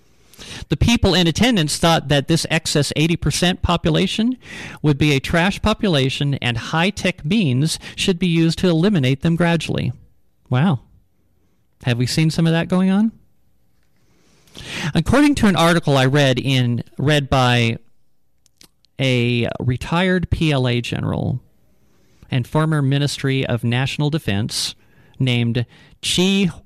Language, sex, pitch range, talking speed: English, male, 120-165 Hz, 125 wpm